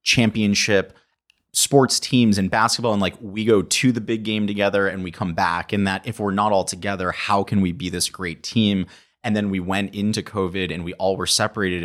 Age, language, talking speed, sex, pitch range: 30-49, English, 220 wpm, male, 90-105 Hz